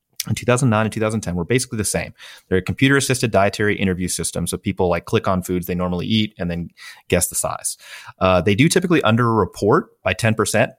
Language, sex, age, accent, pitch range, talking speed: English, male, 30-49, American, 85-105 Hz, 195 wpm